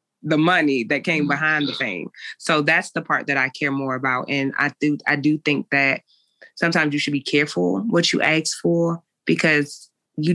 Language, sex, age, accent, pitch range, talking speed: English, female, 20-39, American, 130-150 Hz, 195 wpm